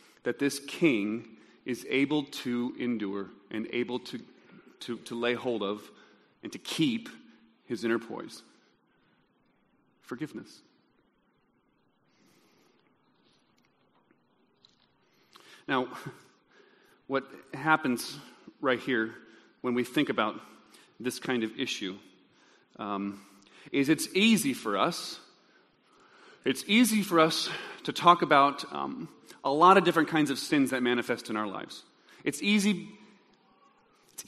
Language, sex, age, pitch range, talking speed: English, male, 40-59, 120-180 Hz, 110 wpm